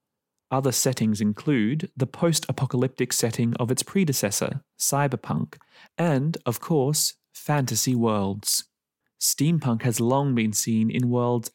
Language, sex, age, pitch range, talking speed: English, male, 30-49, 115-145 Hz, 115 wpm